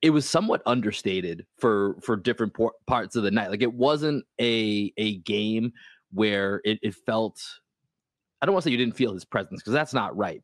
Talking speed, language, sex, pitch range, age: 215 wpm, English, male, 105-125 Hz, 20-39